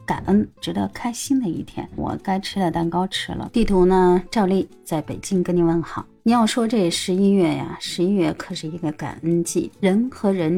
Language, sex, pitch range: Chinese, female, 165-220 Hz